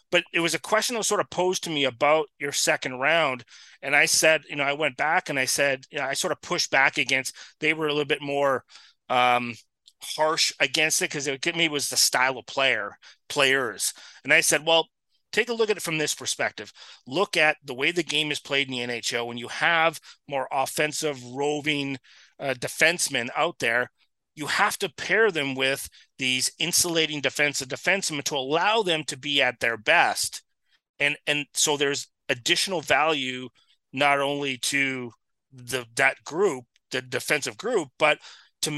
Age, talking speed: 30-49, 190 wpm